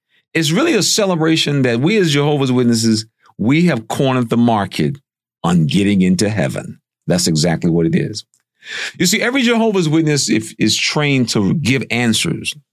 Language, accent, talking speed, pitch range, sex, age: English, American, 155 wpm, 115-160 Hz, male, 50-69